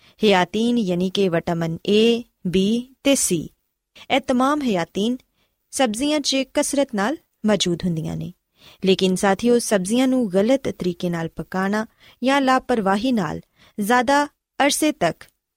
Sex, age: female, 20-39